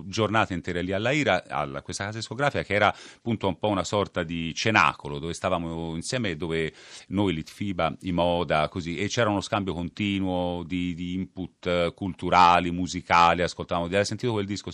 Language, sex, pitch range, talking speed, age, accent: Italian, male, 80-105 Hz, 175 wpm, 40-59, native